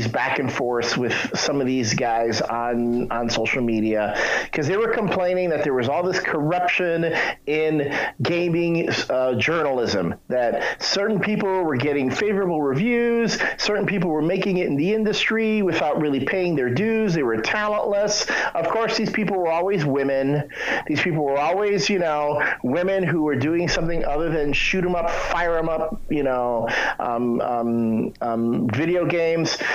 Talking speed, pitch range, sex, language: 165 wpm, 135-200 Hz, male, English